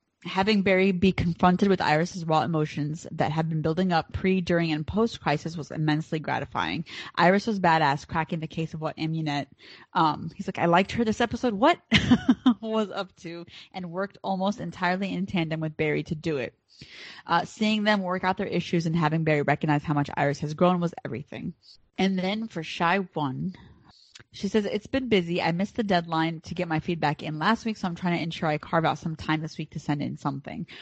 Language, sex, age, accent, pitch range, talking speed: English, female, 20-39, American, 160-190 Hz, 210 wpm